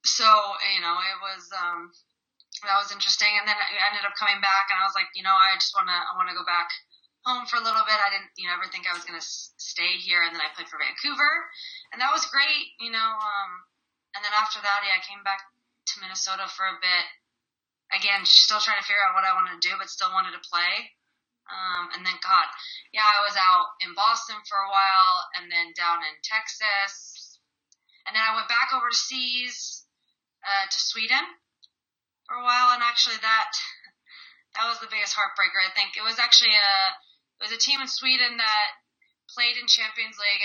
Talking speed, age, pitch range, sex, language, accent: 215 wpm, 20-39, 190-240 Hz, female, English, American